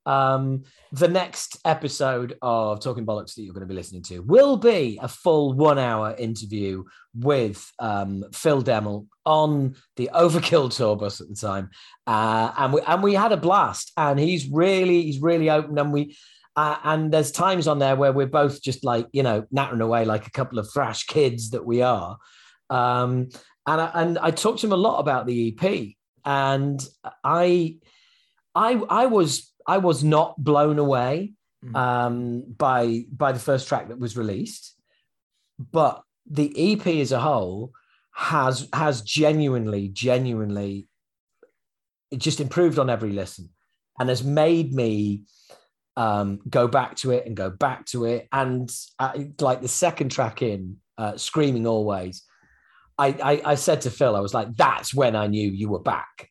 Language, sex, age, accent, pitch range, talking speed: English, male, 40-59, British, 110-150 Hz, 170 wpm